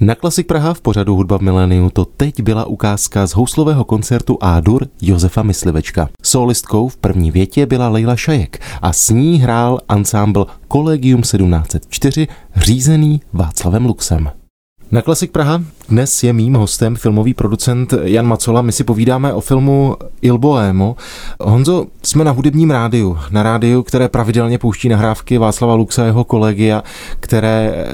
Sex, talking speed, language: male, 150 wpm, Czech